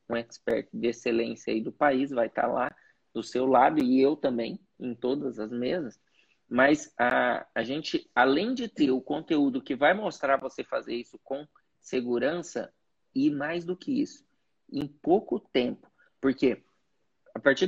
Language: Portuguese